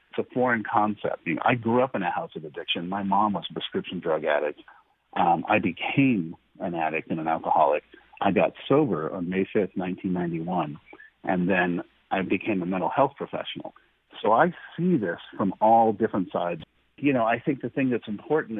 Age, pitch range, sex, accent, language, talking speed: 50-69, 95-125 Hz, male, American, English, 185 wpm